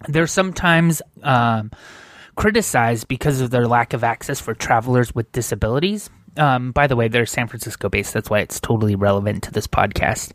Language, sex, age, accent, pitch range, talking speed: English, male, 20-39, American, 115-140 Hz, 170 wpm